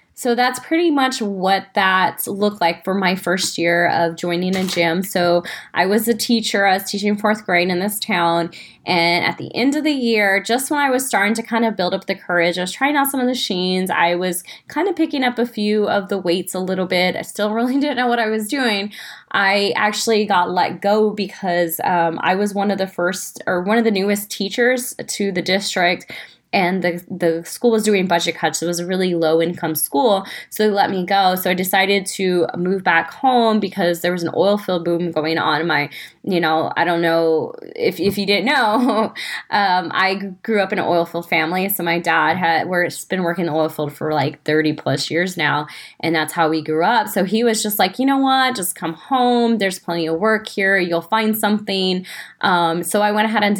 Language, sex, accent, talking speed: English, female, American, 230 wpm